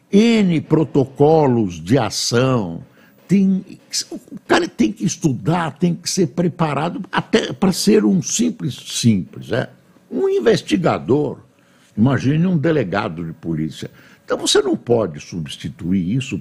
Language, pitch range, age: Portuguese, 125-180 Hz, 60-79